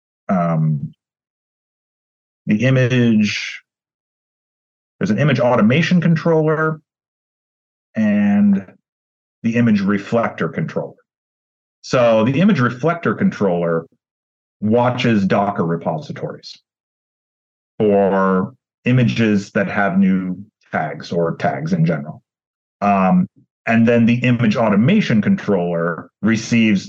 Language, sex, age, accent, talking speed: English, male, 40-59, American, 85 wpm